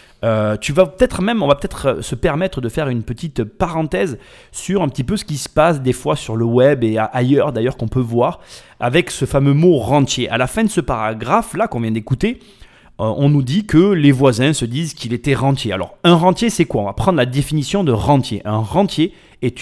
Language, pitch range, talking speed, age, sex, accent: French, 115-170 Hz, 230 wpm, 30-49, male, French